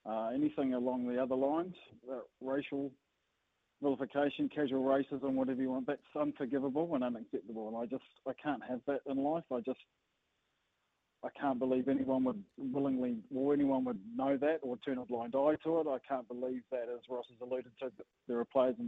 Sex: male